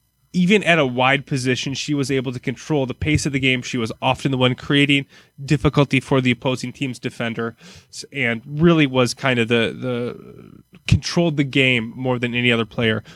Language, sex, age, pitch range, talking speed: English, male, 20-39, 125-145 Hz, 195 wpm